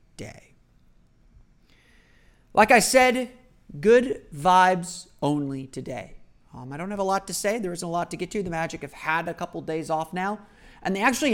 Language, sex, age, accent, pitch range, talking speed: English, male, 30-49, American, 145-205 Hz, 185 wpm